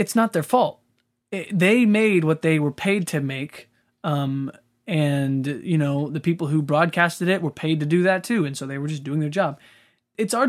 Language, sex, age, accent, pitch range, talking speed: English, male, 20-39, American, 145-175 Hz, 210 wpm